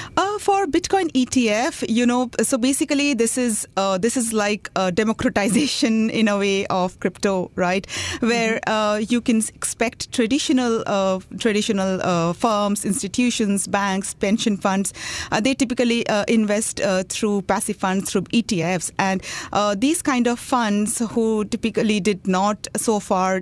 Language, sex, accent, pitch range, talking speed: English, female, Indian, 190-235 Hz, 150 wpm